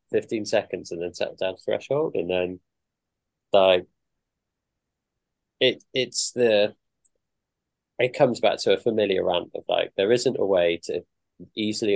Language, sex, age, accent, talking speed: English, male, 20-39, British, 145 wpm